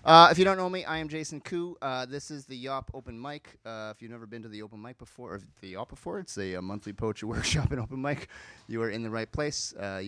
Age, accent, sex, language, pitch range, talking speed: 30-49, American, male, English, 105-140 Hz, 275 wpm